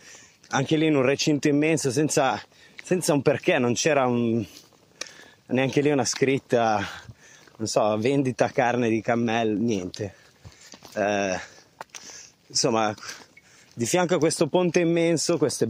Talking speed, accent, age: 120 wpm, native, 20-39